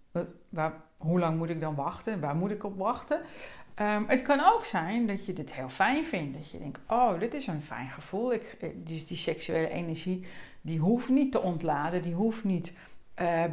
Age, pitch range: 50-69, 160-210 Hz